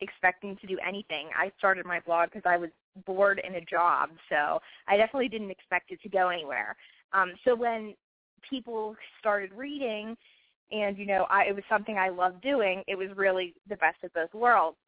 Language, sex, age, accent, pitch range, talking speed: English, female, 20-39, American, 180-235 Hz, 195 wpm